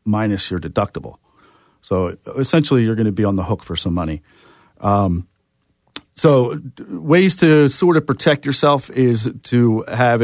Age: 40-59